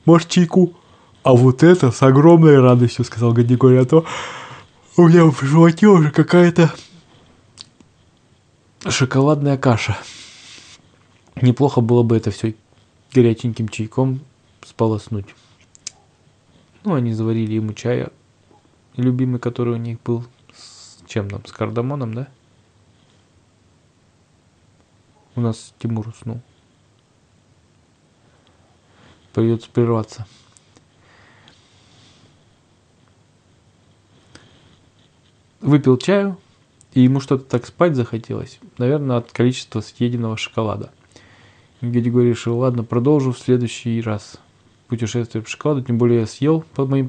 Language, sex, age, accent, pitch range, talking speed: Russian, male, 20-39, native, 110-130 Hz, 100 wpm